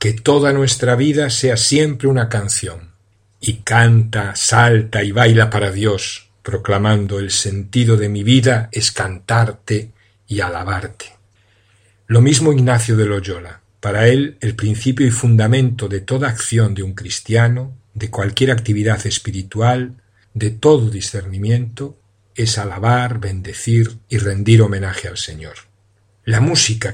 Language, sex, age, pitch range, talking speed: Spanish, male, 50-69, 100-120 Hz, 130 wpm